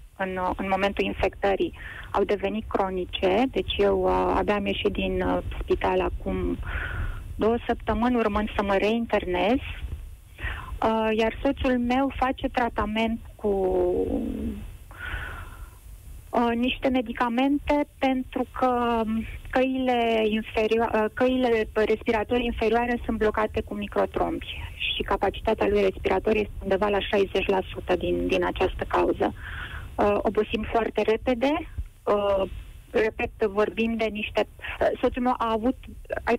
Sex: female